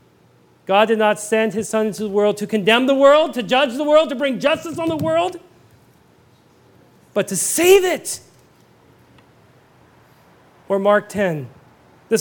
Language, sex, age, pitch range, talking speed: English, male, 40-59, 225-300 Hz, 150 wpm